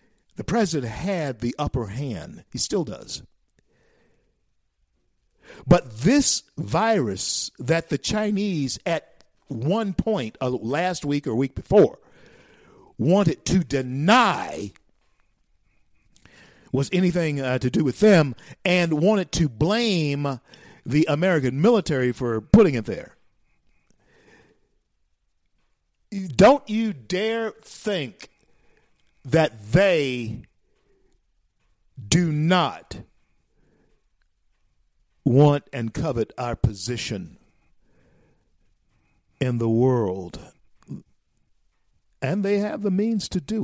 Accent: American